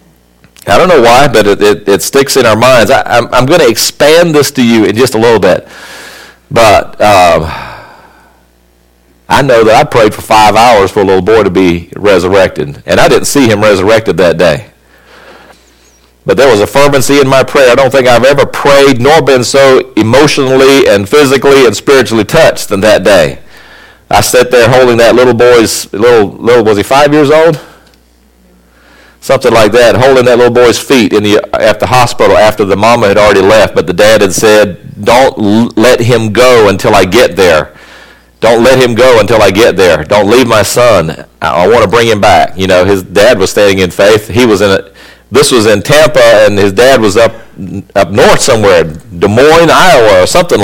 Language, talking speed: English, 205 wpm